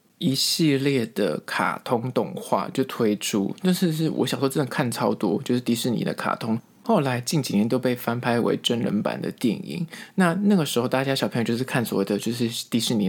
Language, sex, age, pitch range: Chinese, male, 20-39, 120-175 Hz